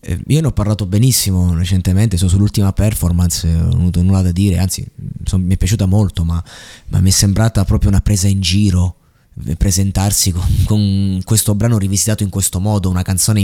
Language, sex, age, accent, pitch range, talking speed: Italian, male, 20-39, native, 100-130 Hz, 185 wpm